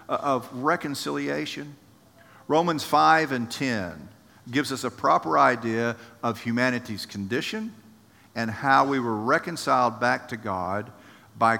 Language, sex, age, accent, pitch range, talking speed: English, male, 50-69, American, 105-135 Hz, 120 wpm